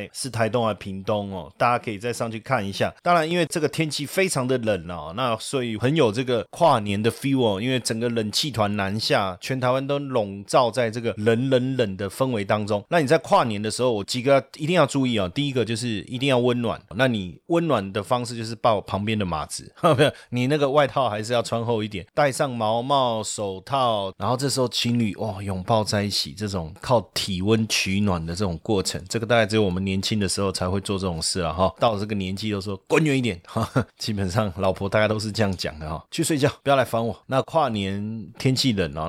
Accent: native